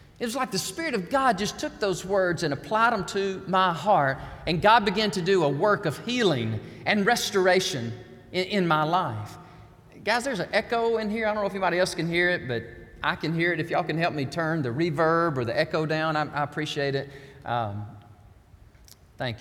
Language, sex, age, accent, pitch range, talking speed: English, male, 40-59, American, 145-230 Hz, 215 wpm